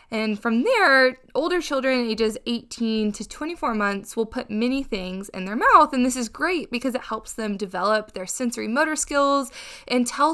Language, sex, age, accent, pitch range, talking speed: English, female, 20-39, American, 205-275 Hz, 185 wpm